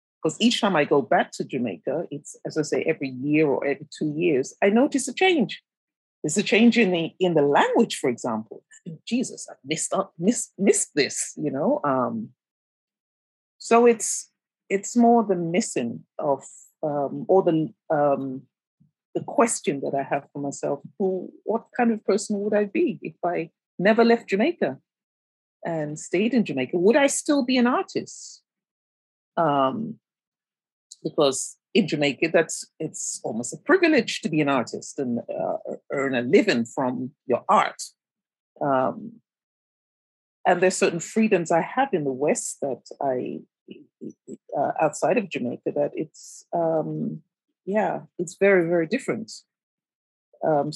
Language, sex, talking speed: English, female, 150 wpm